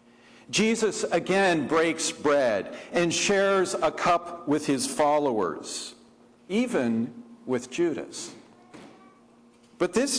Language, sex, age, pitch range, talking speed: English, male, 50-69, 155-220 Hz, 95 wpm